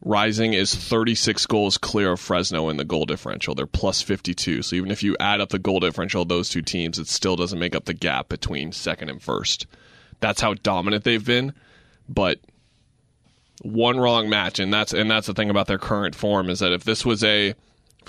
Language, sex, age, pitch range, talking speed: English, male, 20-39, 95-110 Hz, 210 wpm